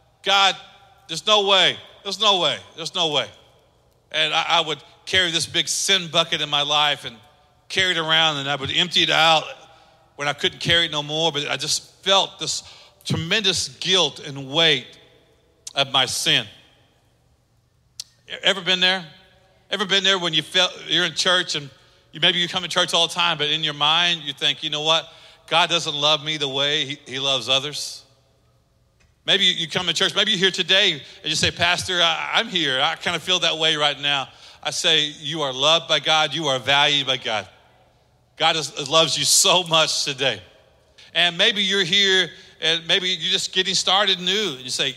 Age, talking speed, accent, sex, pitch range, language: 40-59, 190 wpm, American, male, 145-185 Hz, English